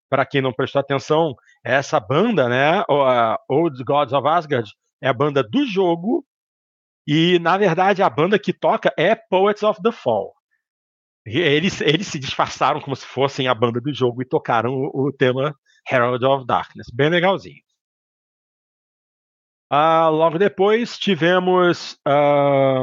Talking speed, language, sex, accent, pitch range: 150 wpm, Portuguese, male, Brazilian, 135-200 Hz